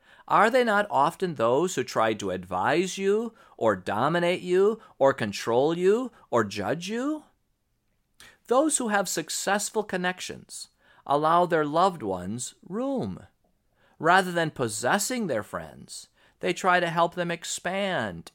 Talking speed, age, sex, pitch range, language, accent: 130 wpm, 40-59, male, 110-175 Hz, English, American